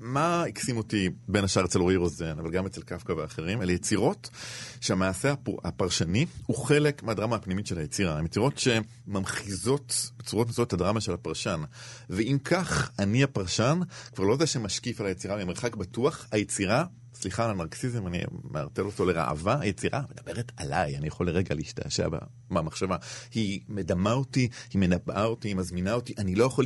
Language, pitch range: Hebrew, 95-120 Hz